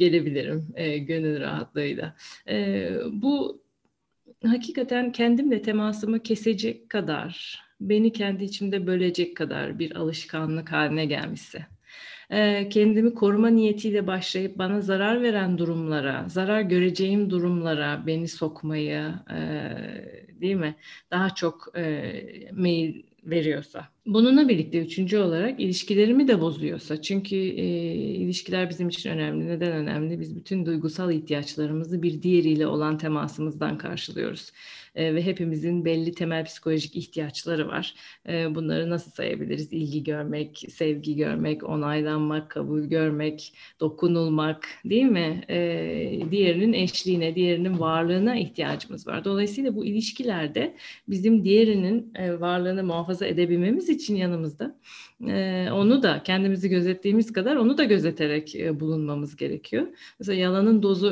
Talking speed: 120 wpm